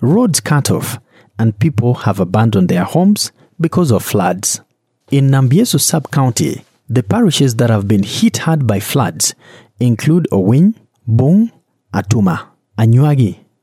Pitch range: 110-160 Hz